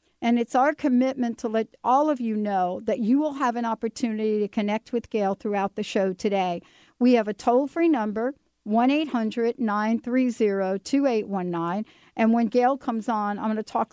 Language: English